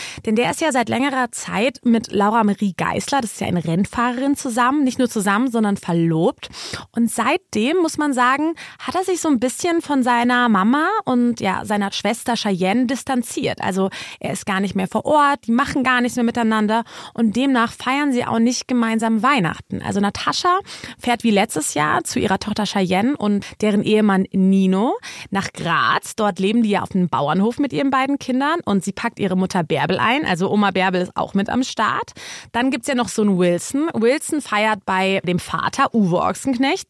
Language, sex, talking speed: German, female, 195 wpm